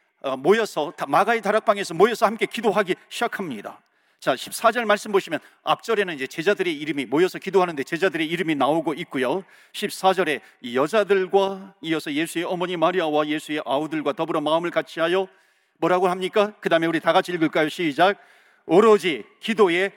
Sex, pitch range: male, 175-230 Hz